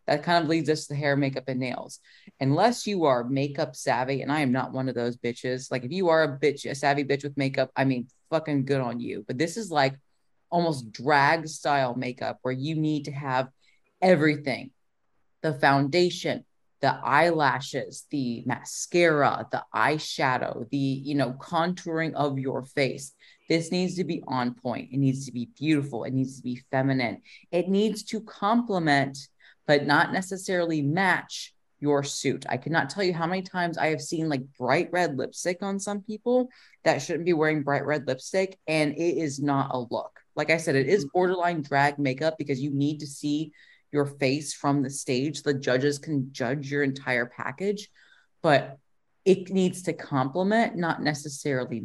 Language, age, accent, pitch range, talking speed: English, 30-49, American, 135-165 Hz, 180 wpm